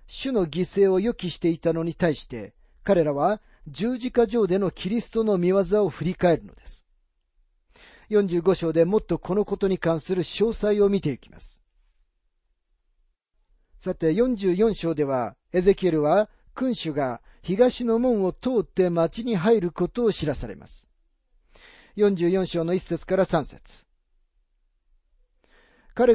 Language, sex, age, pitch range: Japanese, male, 40-59, 145-200 Hz